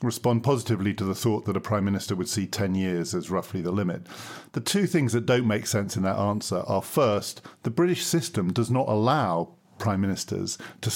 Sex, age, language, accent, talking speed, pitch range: male, 50-69, English, British, 210 wpm, 100-125 Hz